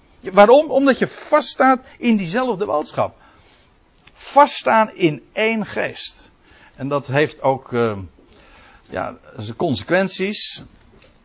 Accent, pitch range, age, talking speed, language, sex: Dutch, 120-185 Hz, 60-79, 100 wpm, Dutch, male